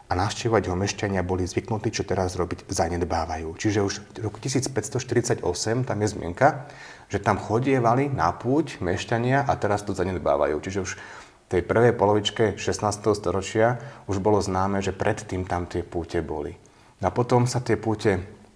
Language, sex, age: Slovak, male, 30-49